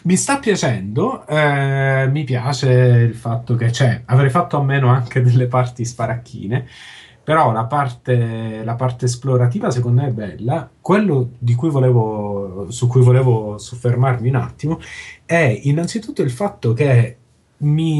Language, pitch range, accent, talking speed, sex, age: Italian, 115-140 Hz, native, 145 wpm, male, 30-49